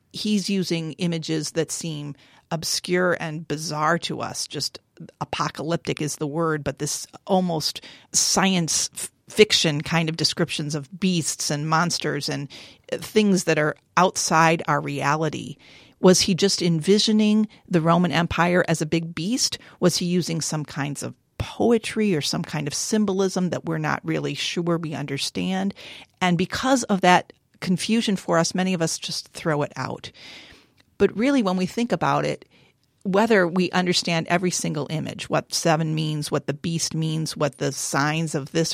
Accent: American